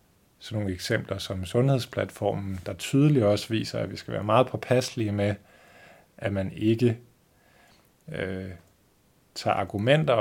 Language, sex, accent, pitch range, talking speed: Danish, male, native, 95-115 Hz, 130 wpm